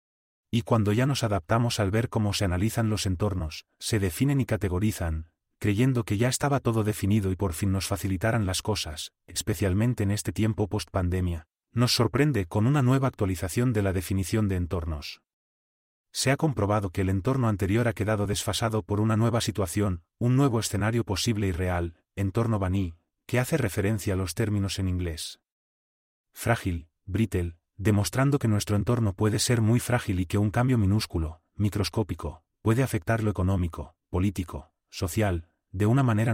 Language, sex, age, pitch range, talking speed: Spanish, male, 30-49, 95-115 Hz, 165 wpm